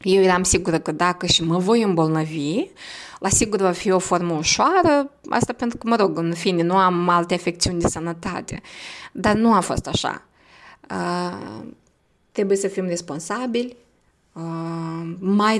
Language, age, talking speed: Romanian, 20-39, 150 wpm